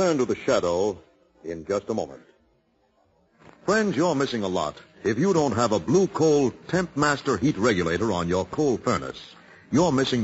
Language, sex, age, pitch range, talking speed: English, male, 60-79, 115-170 Hz, 175 wpm